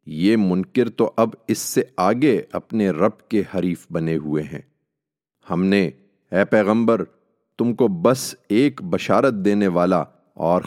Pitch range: 85-105 Hz